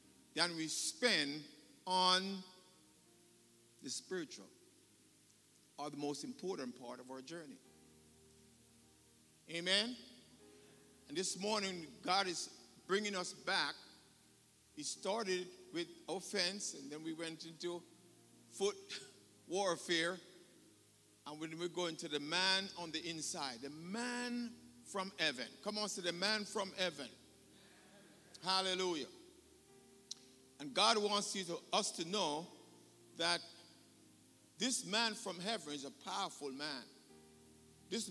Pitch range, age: 160-220 Hz, 50-69